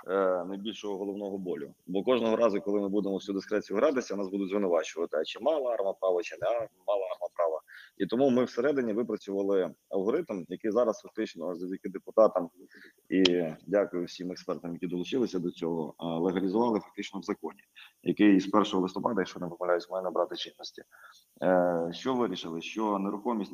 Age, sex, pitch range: 20-39, male, 90-110 Hz